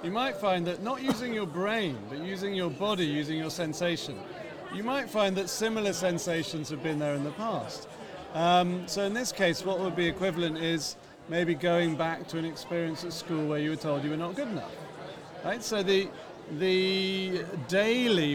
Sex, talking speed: male, 195 wpm